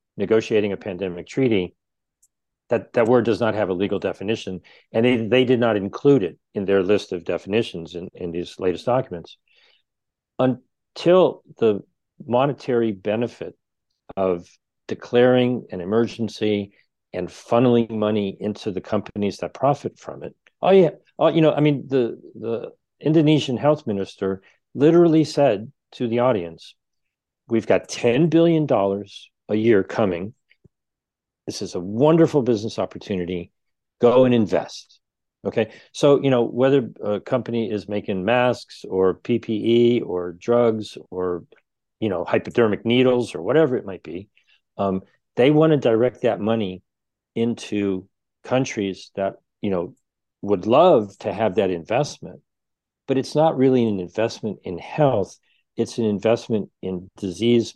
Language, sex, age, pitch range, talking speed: English, male, 50-69, 100-125 Hz, 140 wpm